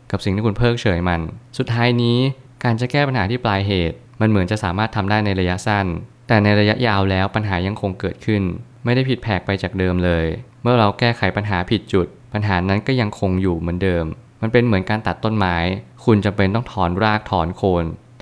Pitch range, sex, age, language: 95-120 Hz, male, 20-39, Thai